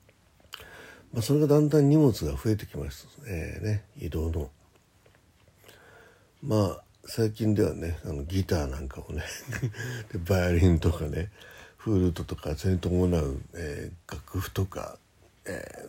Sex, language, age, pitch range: male, Japanese, 60-79, 85-115 Hz